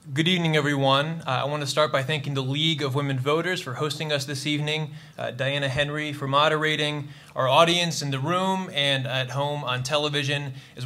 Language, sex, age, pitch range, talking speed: English, male, 20-39, 135-150 Hz, 200 wpm